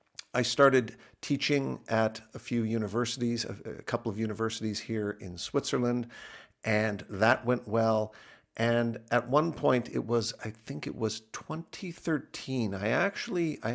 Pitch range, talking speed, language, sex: 110-130 Hz, 145 wpm, English, male